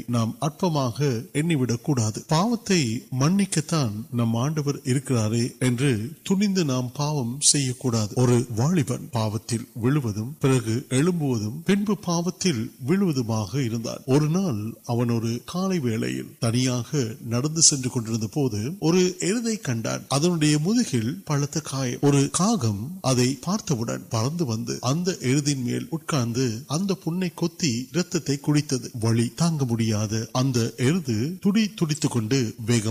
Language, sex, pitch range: Urdu, male, 120-165 Hz